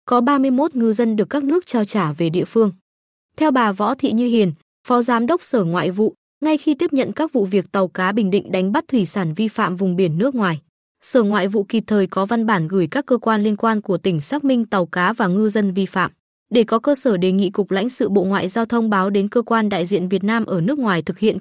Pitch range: 190-245 Hz